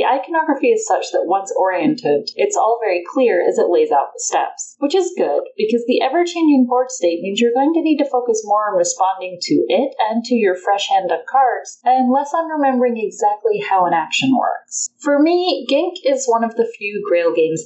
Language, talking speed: English, 220 wpm